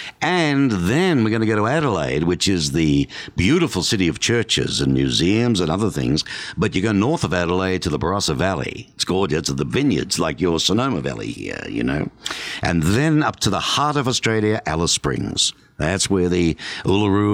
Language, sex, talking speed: English, male, 195 wpm